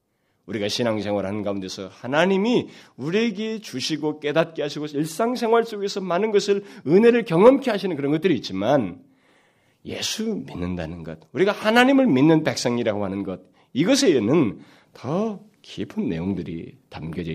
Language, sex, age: Korean, male, 40-59